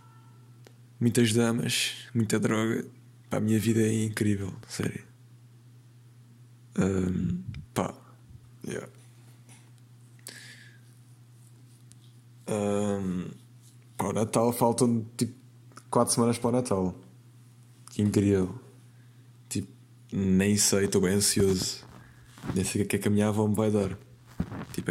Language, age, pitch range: Portuguese, 20-39, 105-120 Hz